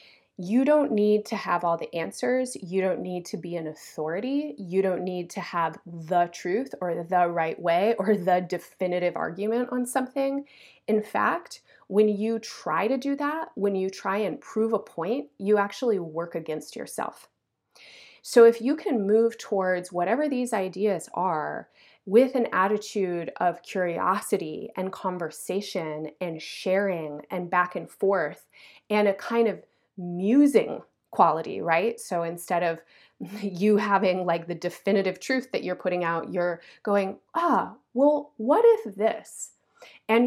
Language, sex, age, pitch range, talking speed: English, female, 30-49, 175-230 Hz, 155 wpm